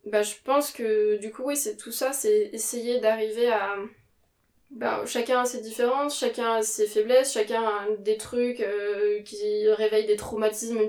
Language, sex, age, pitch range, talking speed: French, female, 20-39, 205-245 Hz, 180 wpm